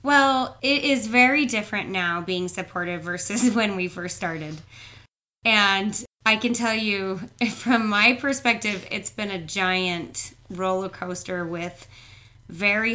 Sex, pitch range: female, 160-210 Hz